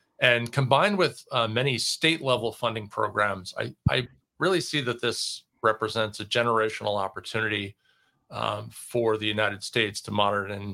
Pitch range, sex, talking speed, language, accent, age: 105-120 Hz, male, 145 wpm, English, American, 40-59